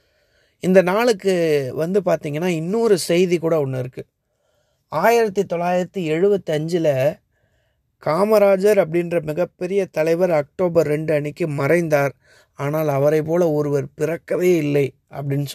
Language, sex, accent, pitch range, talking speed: Tamil, male, native, 145-185 Hz, 105 wpm